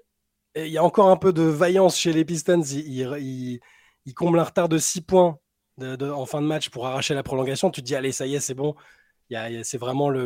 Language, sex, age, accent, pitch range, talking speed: French, male, 20-39, French, 120-150 Hz, 270 wpm